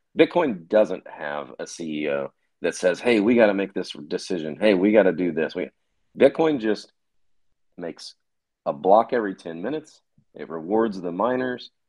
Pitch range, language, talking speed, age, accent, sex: 80-95 Hz, English, 165 wpm, 40-59, American, male